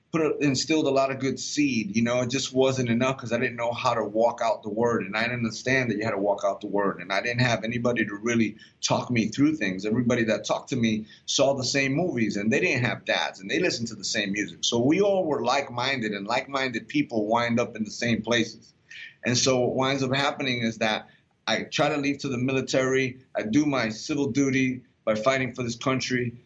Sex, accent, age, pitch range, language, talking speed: male, American, 30-49, 110-130 Hz, English, 245 wpm